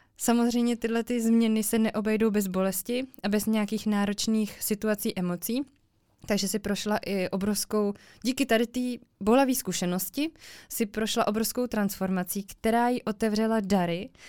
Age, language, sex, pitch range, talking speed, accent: 20-39, Czech, female, 205-235 Hz, 130 wpm, native